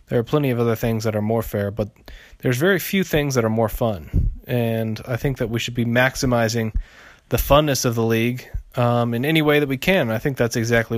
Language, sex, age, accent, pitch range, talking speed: English, male, 30-49, American, 110-130 Hz, 235 wpm